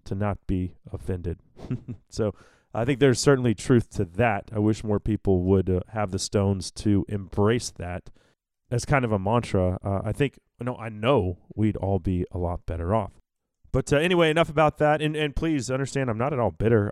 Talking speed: 200 wpm